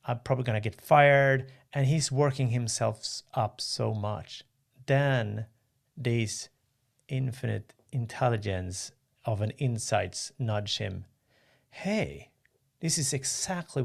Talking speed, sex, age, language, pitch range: 115 wpm, male, 40-59, English, 115-135 Hz